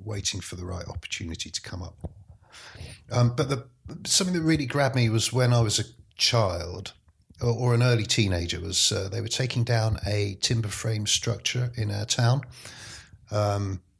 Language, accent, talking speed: English, British, 175 wpm